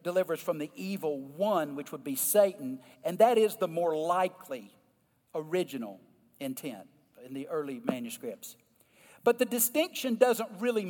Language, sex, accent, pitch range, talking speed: English, male, American, 185-245 Hz, 145 wpm